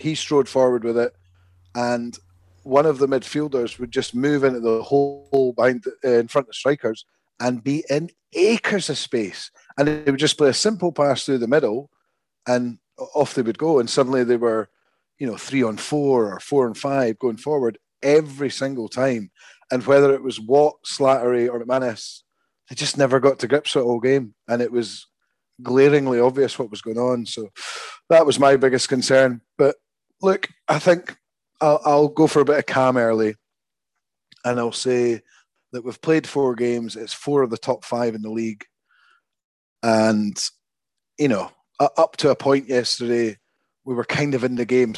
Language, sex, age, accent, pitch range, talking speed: English, male, 30-49, British, 120-145 Hz, 190 wpm